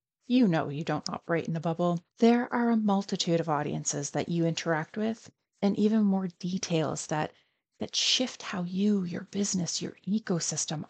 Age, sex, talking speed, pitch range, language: 30-49, female, 170 wpm, 170-225 Hz, English